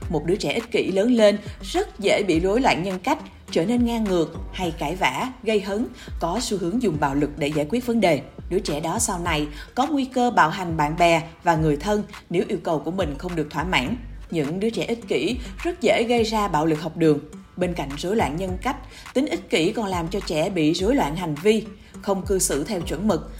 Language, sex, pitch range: Vietnamese, female, 160-225 Hz